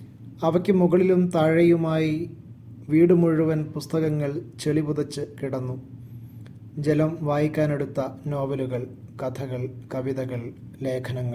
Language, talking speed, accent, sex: Malayalam, 65 wpm, native, male